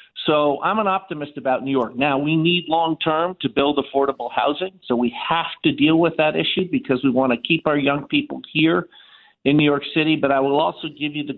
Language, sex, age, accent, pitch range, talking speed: English, male, 50-69, American, 125-155 Hz, 225 wpm